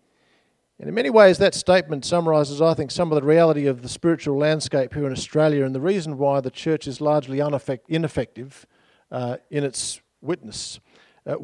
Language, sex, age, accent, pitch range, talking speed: English, male, 50-69, Australian, 130-170 Hz, 180 wpm